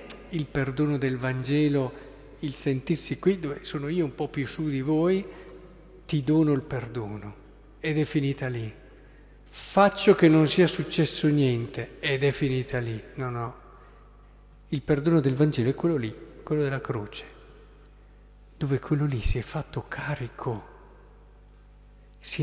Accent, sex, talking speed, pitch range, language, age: native, male, 145 wpm, 125-170 Hz, Italian, 50-69